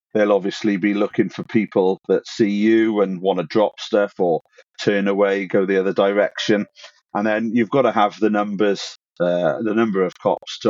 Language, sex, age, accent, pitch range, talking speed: English, male, 40-59, British, 100-120 Hz, 195 wpm